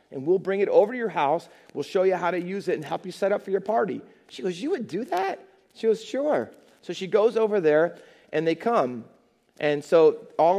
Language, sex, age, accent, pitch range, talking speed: English, male, 40-59, American, 155-200 Hz, 245 wpm